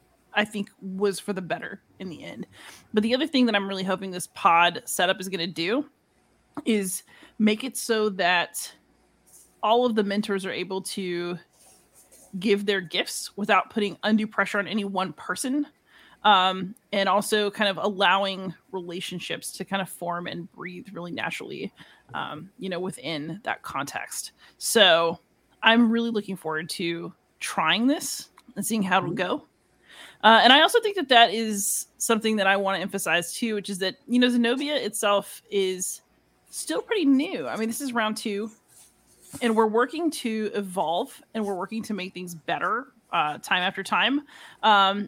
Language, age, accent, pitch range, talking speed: English, 30-49, American, 180-225 Hz, 175 wpm